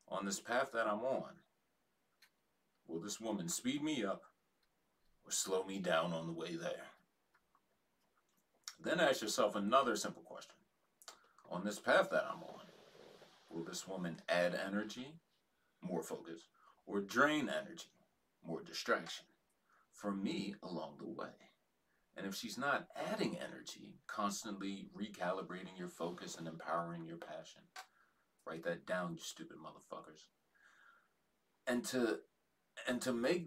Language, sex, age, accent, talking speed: English, male, 40-59, American, 135 wpm